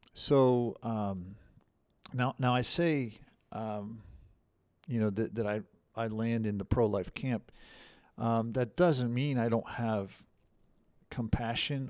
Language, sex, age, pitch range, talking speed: English, male, 50-69, 105-125 Hz, 130 wpm